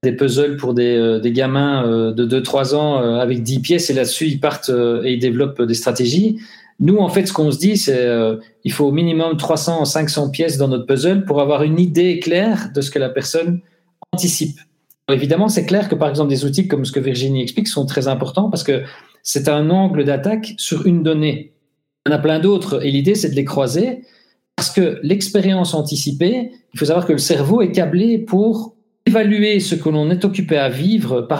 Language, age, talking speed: French, 40-59, 220 wpm